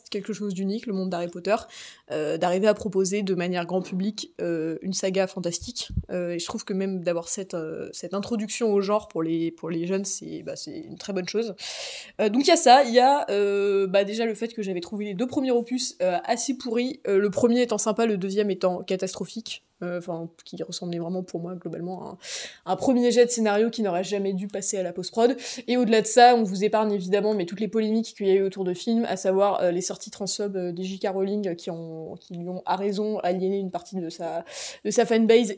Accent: French